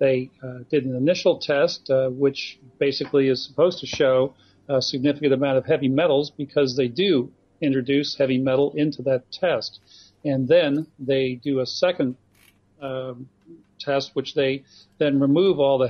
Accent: American